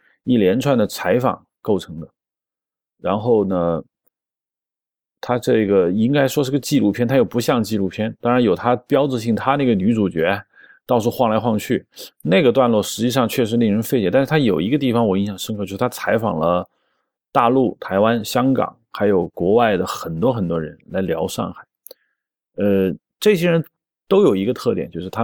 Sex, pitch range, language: male, 100-135 Hz, Chinese